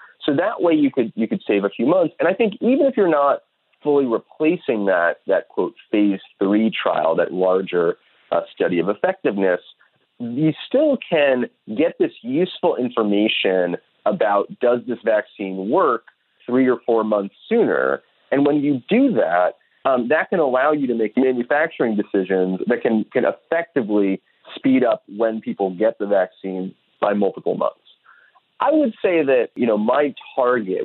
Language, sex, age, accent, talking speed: English, male, 30-49, American, 165 wpm